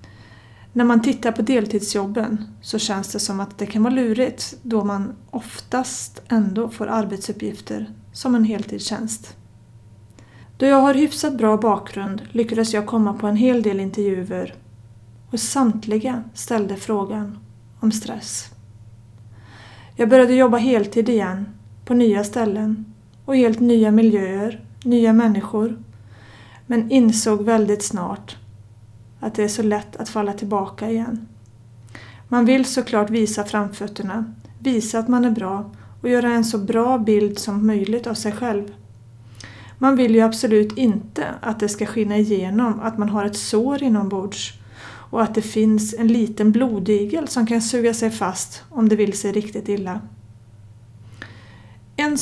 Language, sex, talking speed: Swedish, female, 145 wpm